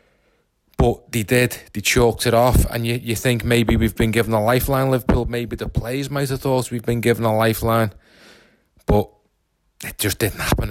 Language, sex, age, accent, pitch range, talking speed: English, male, 30-49, British, 95-110 Hz, 190 wpm